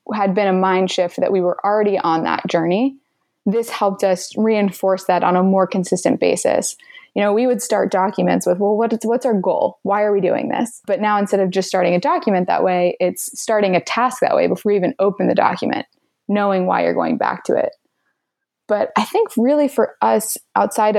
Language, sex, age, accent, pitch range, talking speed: English, female, 20-39, American, 185-230 Hz, 215 wpm